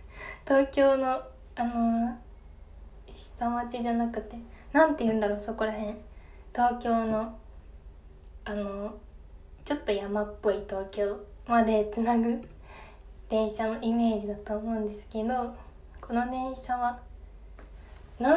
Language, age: Japanese, 20-39